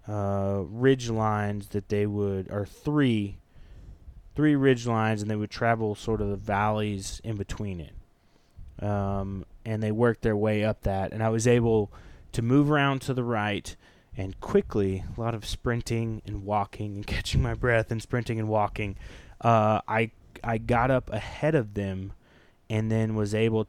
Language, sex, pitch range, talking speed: English, male, 100-120 Hz, 170 wpm